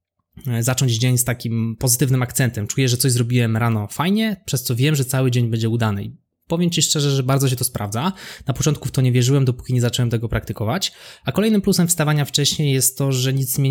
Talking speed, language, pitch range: 215 wpm, Polish, 115-140 Hz